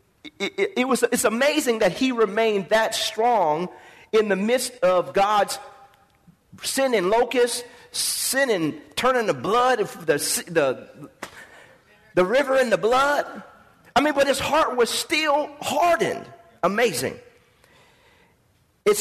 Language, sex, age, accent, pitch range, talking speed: English, male, 40-59, American, 195-265 Hz, 135 wpm